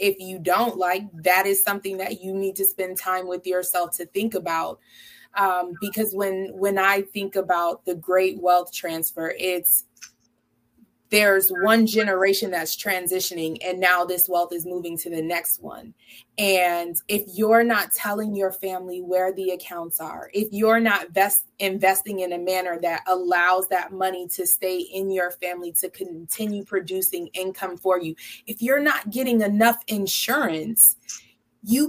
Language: English